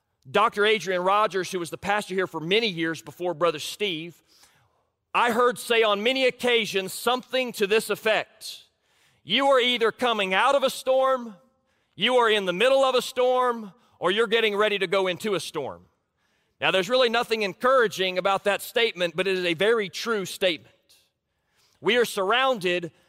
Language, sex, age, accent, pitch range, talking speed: English, male, 40-59, American, 180-230 Hz, 175 wpm